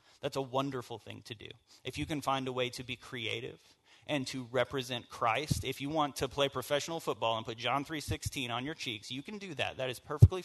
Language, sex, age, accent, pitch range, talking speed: English, male, 30-49, American, 120-145 Hz, 230 wpm